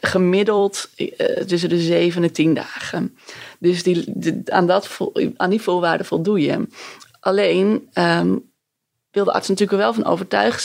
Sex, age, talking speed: female, 20-39, 145 wpm